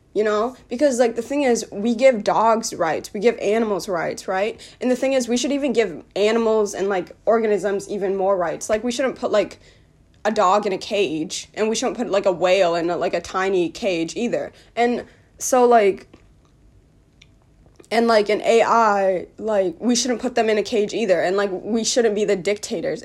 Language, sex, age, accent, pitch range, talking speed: English, female, 20-39, American, 195-235 Hz, 200 wpm